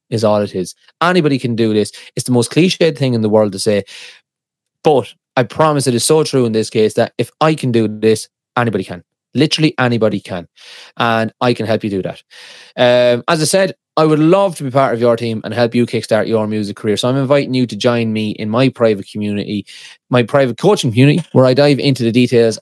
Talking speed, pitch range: 230 wpm, 110-140 Hz